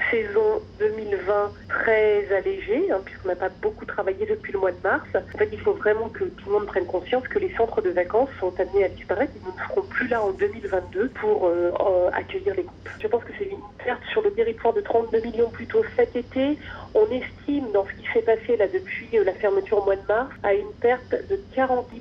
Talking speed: 225 wpm